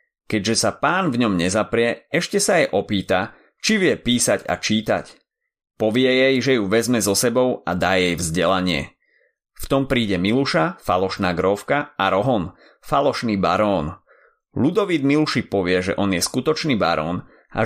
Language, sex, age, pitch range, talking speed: Slovak, male, 30-49, 95-130 Hz, 155 wpm